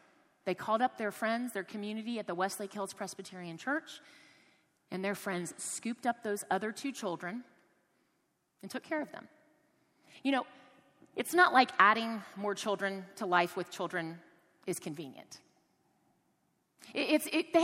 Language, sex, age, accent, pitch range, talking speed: English, female, 30-49, American, 180-240 Hz, 145 wpm